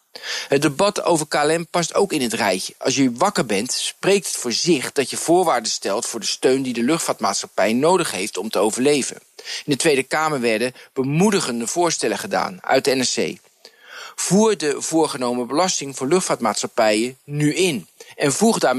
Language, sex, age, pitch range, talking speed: Dutch, male, 50-69, 125-180 Hz, 170 wpm